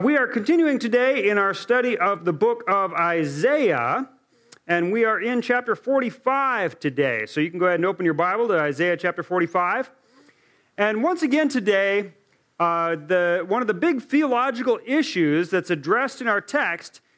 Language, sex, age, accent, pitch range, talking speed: English, male, 40-59, American, 170-245 Hz, 170 wpm